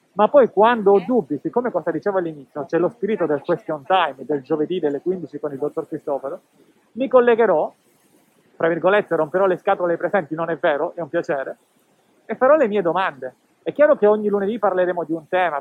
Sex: male